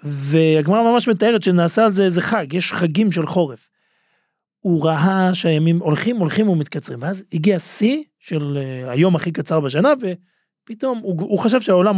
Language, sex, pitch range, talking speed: Hebrew, male, 155-210 Hz, 155 wpm